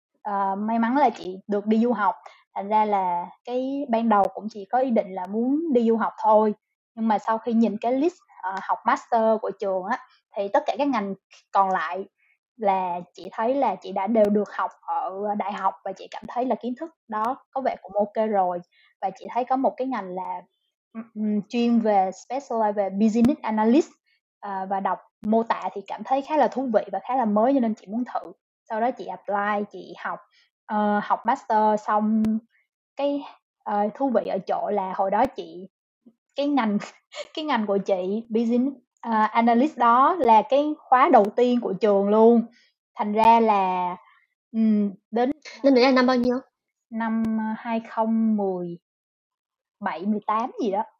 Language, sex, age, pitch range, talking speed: Vietnamese, female, 20-39, 200-245 Hz, 180 wpm